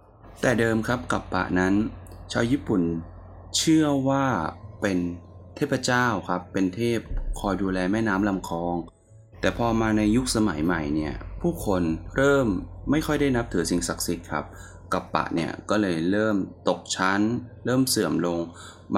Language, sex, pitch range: Thai, male, 90-110 Hz